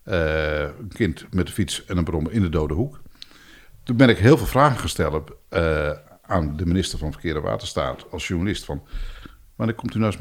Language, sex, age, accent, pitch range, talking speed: Dutch, male, 60-79, Dutch, 85-110 Hz, 205 wpm